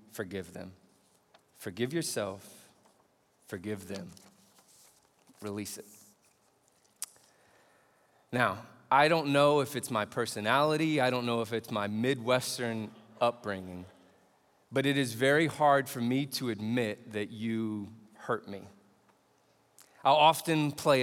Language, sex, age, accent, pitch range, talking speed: English, male, 30-49, American, 115-160 Hz, 115 wpm